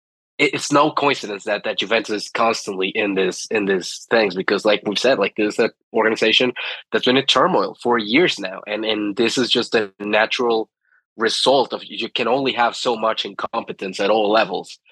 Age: 20-39